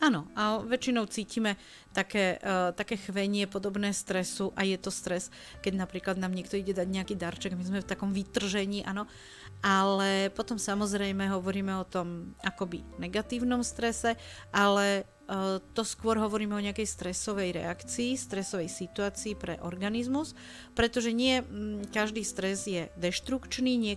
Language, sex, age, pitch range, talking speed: Slovak, female, 40-59, 185-215 Hz, 140 wpm